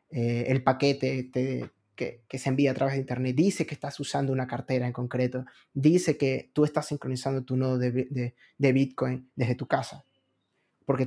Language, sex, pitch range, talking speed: Spanish, male, 130-145 Hz, 195 wpm